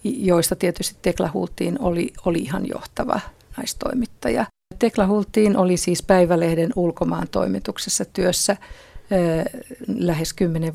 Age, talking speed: 50-69, 105 wpm